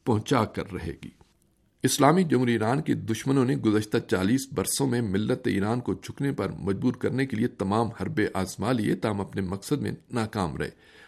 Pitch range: 105-135 Hz